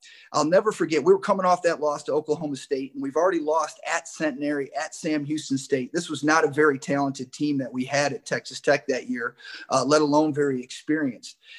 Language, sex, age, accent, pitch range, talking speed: English, male, 30-49, American, 145-180 Hz, 215 wpm